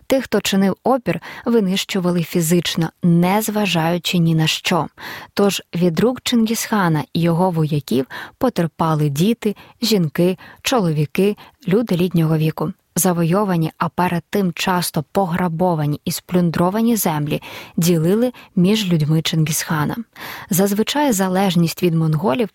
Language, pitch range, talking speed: Ukrainian, 165-205 Hz, 110 wpm